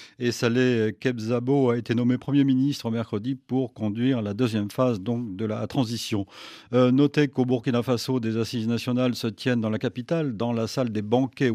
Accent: French